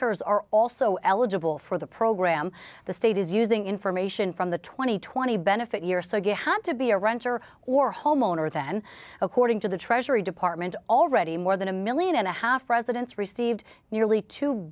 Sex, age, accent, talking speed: female, 30-49, American, 175 wpm